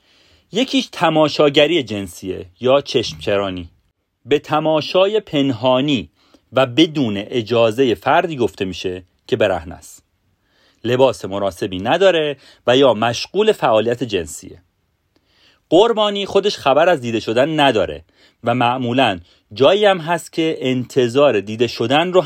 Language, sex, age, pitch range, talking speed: Persian, male, 40-59, 105-155 Hz, 110 wpm